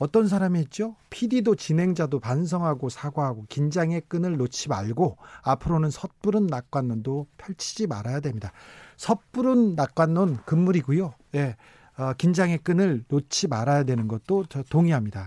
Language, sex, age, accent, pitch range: Korean, male, 40-59, native, 125-185 Hz